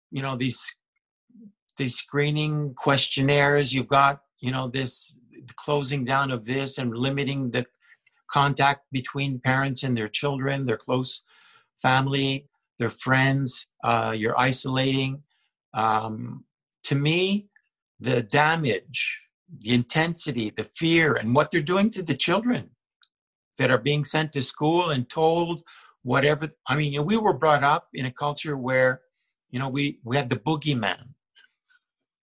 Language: English